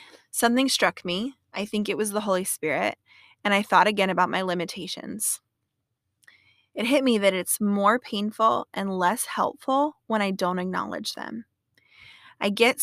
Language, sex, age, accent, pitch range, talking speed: English, female, 20-39, American, 190-245 Hz, 160 wpm